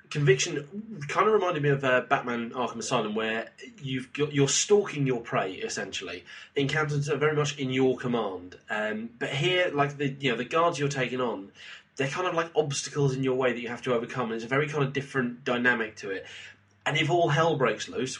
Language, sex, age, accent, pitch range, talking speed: English, male, 20-39, British, 115-145 Hz, 215 wpm